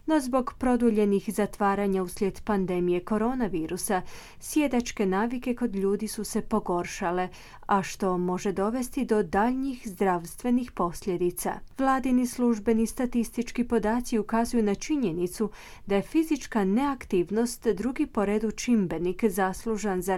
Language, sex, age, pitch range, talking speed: Croatian, female, 30-49, 185-240 Hz, 115 wpm